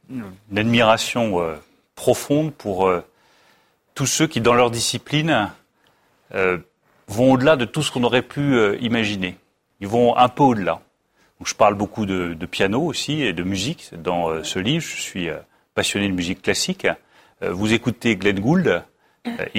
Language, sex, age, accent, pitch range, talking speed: French, male, 40-59, French, 100-125 Hz, 170 wpm